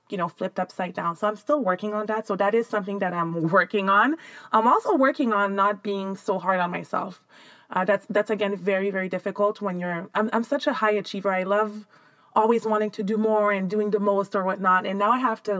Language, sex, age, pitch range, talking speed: English, female, 20-39, 185-215 Hz, 240 wpm